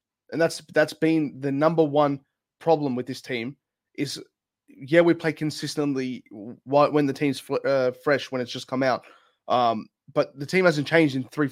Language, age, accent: English, 20-39, Australian